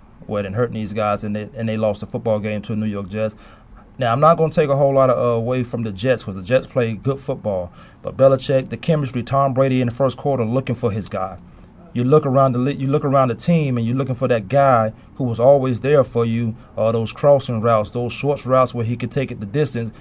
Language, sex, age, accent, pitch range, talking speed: English, male, 30-49, American, 110-135 Hz, 265 wpm